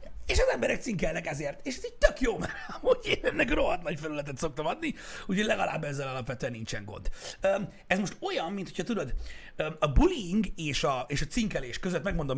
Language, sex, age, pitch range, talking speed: Hungarian, male, 60-79, 135-200 Hz, 195 wpm